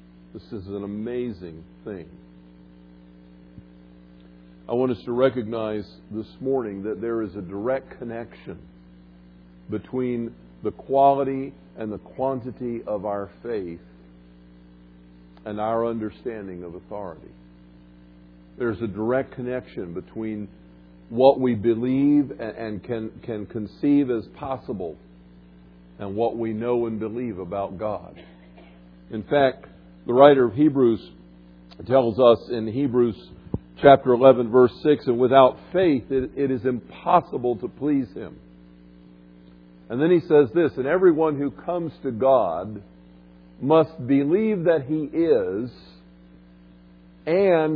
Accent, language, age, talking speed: American, English, 50-69, 120 wpm